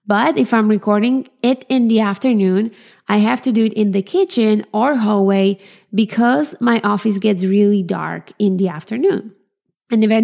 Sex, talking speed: female, 170 wpm